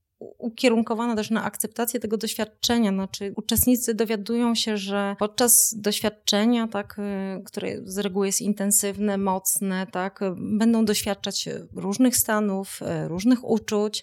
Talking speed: 110 wpm